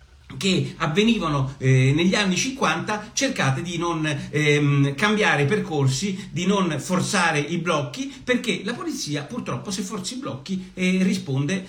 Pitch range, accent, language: 130-190 Hz, native, Italian